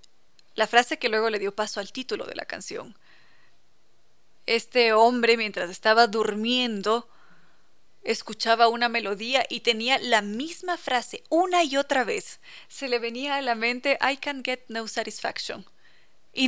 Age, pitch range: 30-49, 220-275 Hz